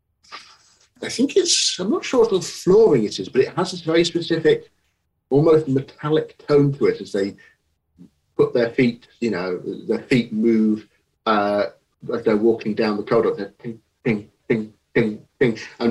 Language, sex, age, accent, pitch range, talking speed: English, male, 40-59, British, 105-155 Hz, 150 wpm